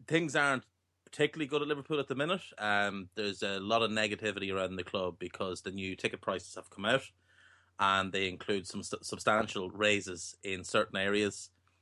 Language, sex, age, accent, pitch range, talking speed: English, male, 30-49, Irish, 90-105 Hz, 185 wpm